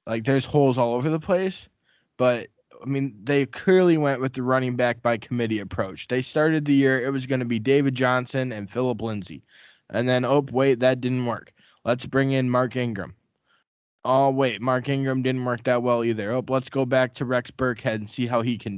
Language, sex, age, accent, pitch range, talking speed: English, male, 20-39, American, 115-130 Hz, 215 wpm